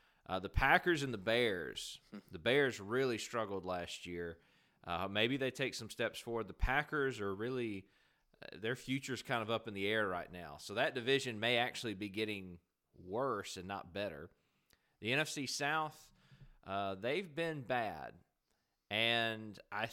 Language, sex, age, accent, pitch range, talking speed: English, male, 30-49, American, 95-125 Hz, 160 wpm